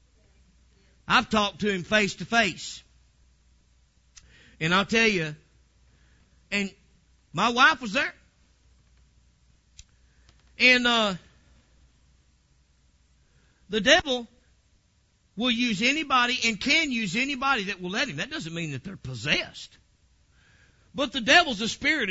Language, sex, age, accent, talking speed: English, male, 50-69, American, 115 wpm